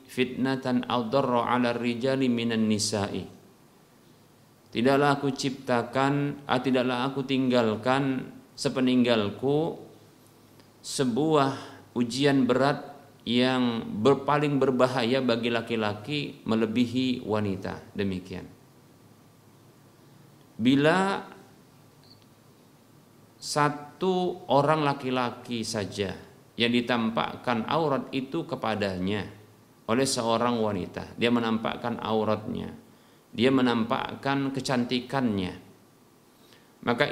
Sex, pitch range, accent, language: male, 115-140 Hz, native, Indonesian